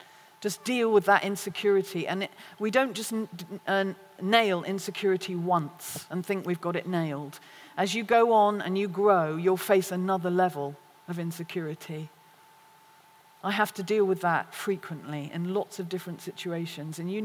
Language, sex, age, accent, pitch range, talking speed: English, female, 40-59, British, 170-200 Hz, 155 wpm